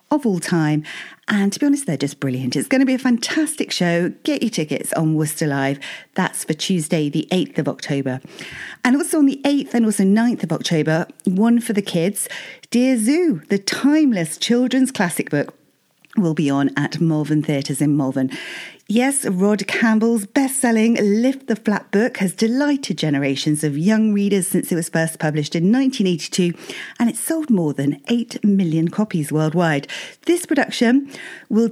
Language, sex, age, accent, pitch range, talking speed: English, female, 40-59, British, 160-245 Hz, 175 wpm